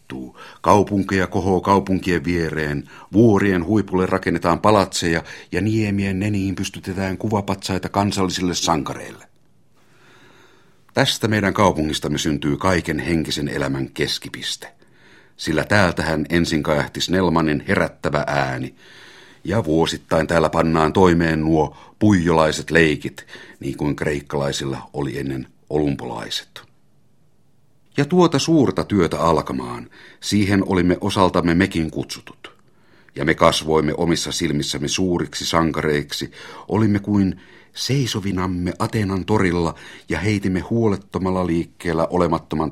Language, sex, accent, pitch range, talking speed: Finnish, male, native, 75-100 Hz, 100 wpm